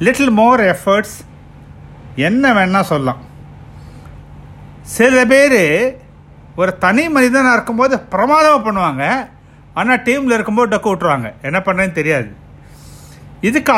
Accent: native